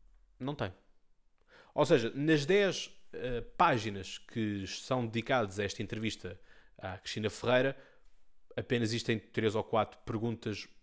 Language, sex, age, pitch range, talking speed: Portuguese, male, 20-39, 105-135 Hz, 125 wpm